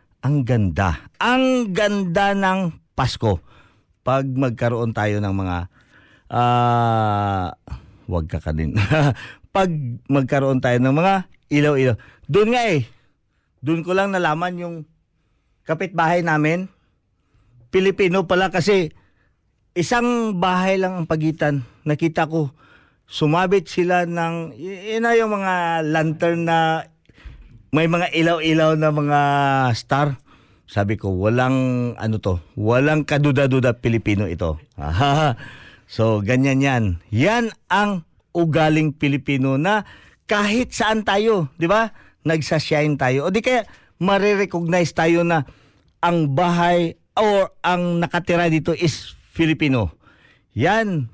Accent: native